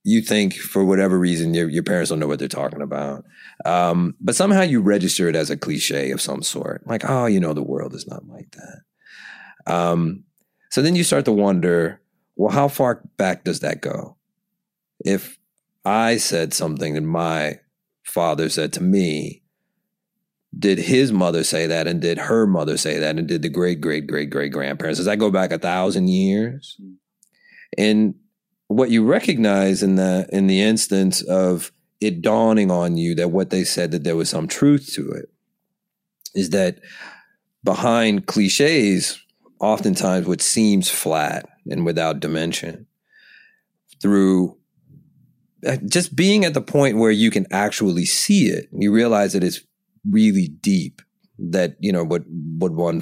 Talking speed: 165 wpm